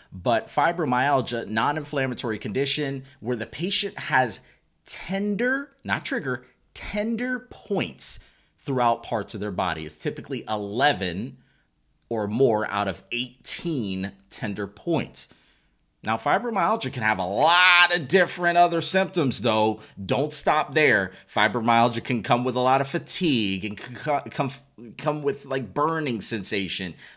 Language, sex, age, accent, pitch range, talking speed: English, male, 30-49, American, 105-175 Hz, 130 wpm